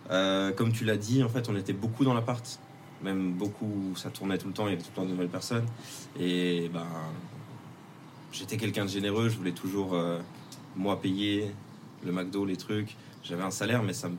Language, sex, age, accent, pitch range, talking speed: French, male, 20-39, French, 95-135 Hz, 210 wpm